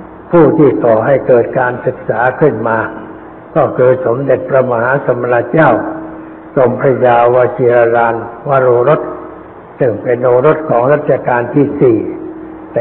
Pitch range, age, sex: 120-145 Hz, 60-79, male